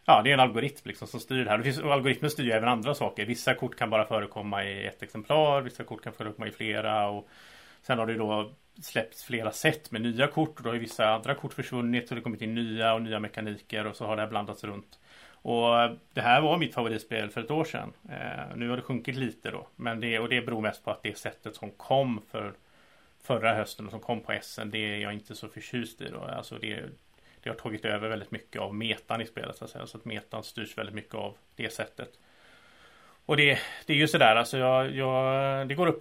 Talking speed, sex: 240 wpm, male